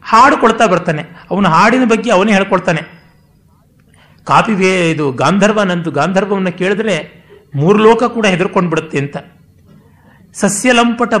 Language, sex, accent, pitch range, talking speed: Kannada, male, native, 160-205 Hz, 100 wpm